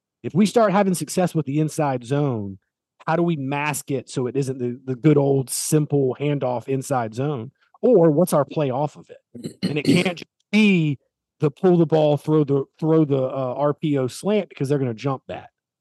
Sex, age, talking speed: male, 30-49, 200 wpm